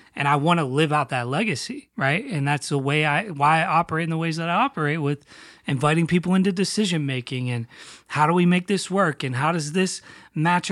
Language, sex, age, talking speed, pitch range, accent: English, male, 30-49, 230 wpm, 135-170 Hz, American